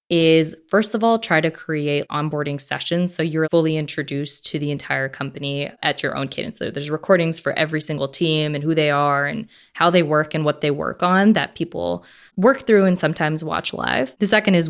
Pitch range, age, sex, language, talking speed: 155-175 Hz, 20-39, female, English, 210 wpm